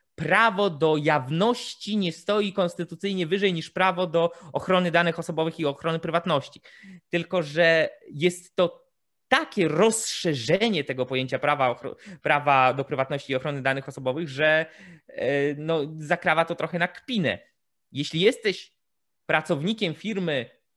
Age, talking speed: 20-39, 120 wpm